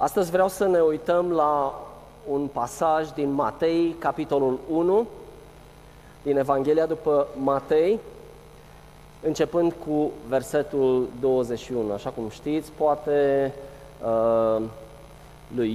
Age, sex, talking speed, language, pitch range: 20-39, male, 95 wpm, Romanian, 125-165 Hz